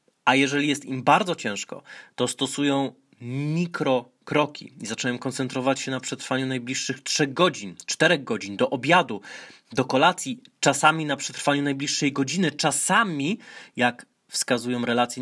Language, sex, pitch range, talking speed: Polish, male, 125-145 Hz, 130 wpm